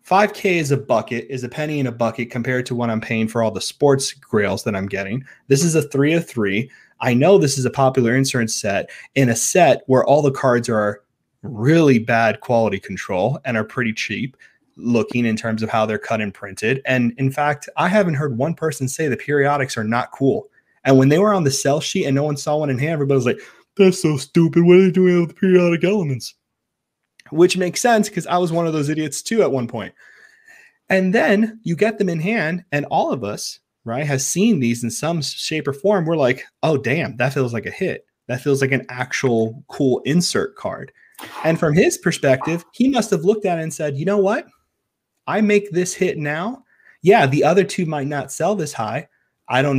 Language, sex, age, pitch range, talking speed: English, male, 20-39, 125-180 Hz, 225 wpm